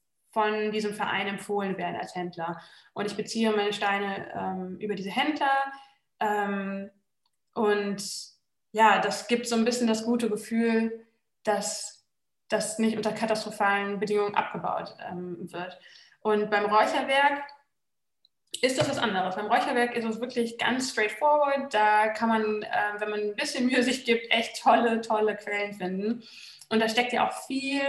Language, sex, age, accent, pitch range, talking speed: German, female, 20-39, German, 205-235 Hz, 155 wpm